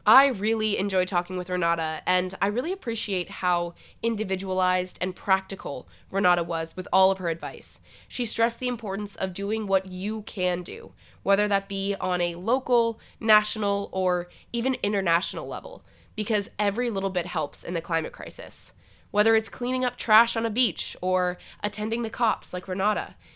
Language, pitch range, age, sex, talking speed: English, 180-225 Hz, 20-39, female, 165 wpm